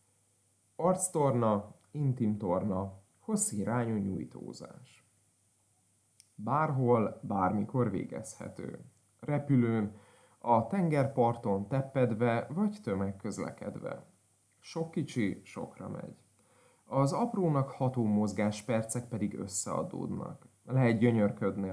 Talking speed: 75 wpm